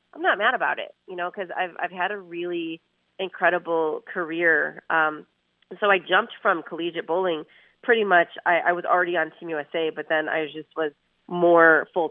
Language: English